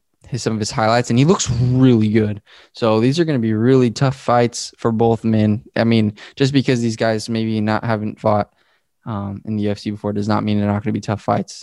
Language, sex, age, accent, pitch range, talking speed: English, male, 20-39, American, 105-120 Hz, 245 wpm